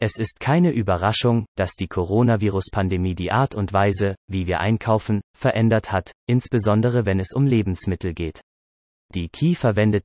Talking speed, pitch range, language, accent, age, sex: 150 wpm, 95-115 Hz, German, German, 30-49, male